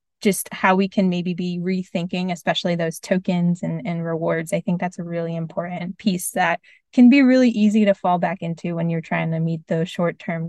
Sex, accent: female, American